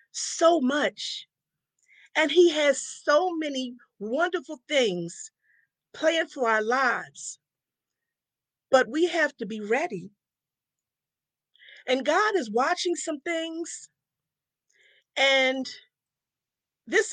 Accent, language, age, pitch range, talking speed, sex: American, English, 50-69, 230-310 Hz, 95 wpm, female